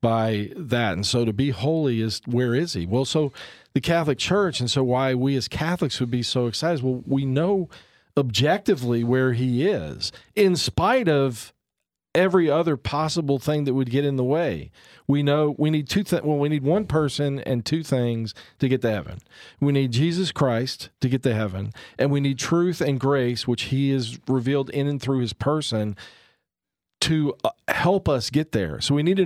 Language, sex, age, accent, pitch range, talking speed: English, male, 40-59, American, 130-170 Hz, 200 wpm